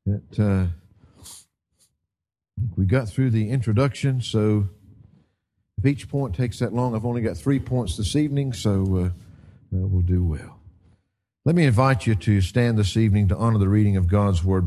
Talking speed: 170 wpm